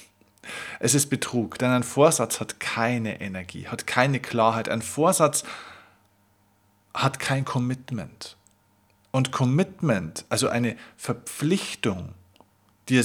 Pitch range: 110-135 Hz